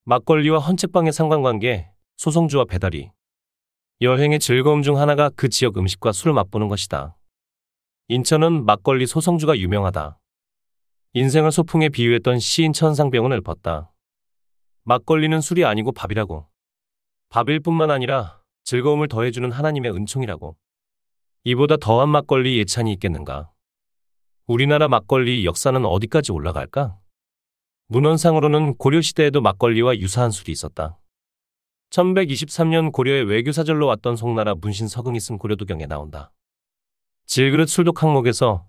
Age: 30-49